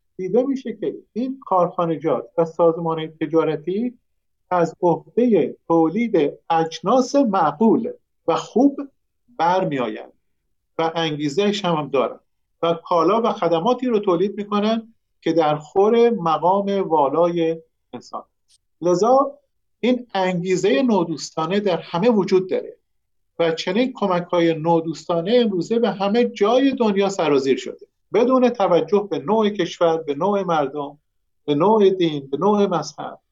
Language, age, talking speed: Persian, 50-69, 120 wpm